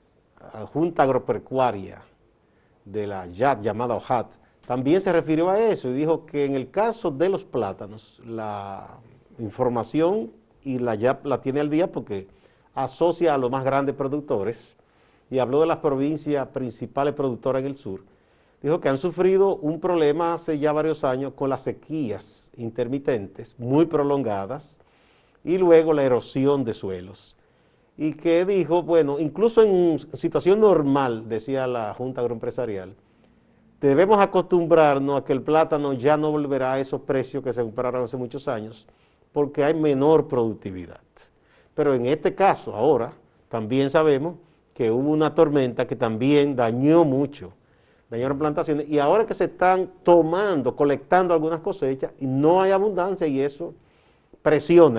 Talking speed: 150 wpm